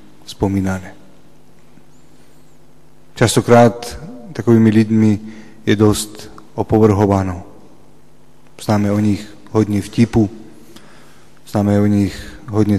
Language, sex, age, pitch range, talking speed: Slovak, male, 30-49, 105-125 Hz, 75 wpm